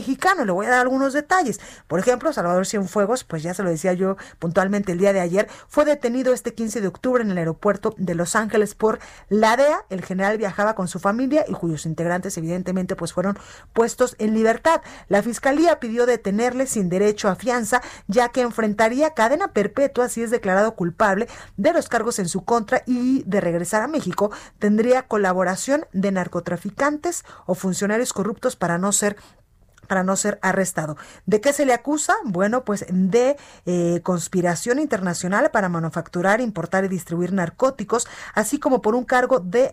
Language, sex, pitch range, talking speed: Spanish, female, 190-250 Hz, 175 wpm